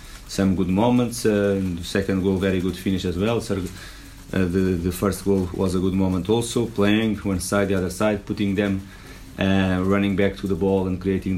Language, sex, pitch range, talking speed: English, male, 90-100 Hz, 205 wpm